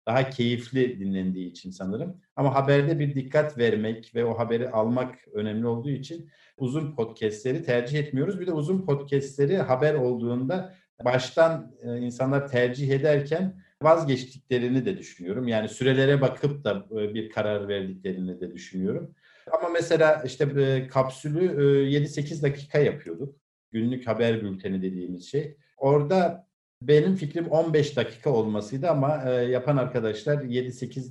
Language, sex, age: Turkish, male, 50-69